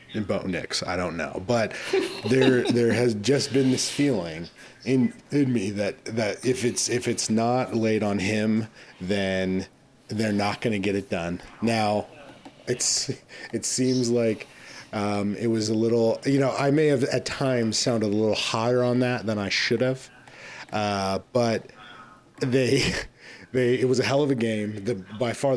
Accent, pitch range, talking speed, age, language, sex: American, 100-125 Hz, 185 wpm, 30-49, English, male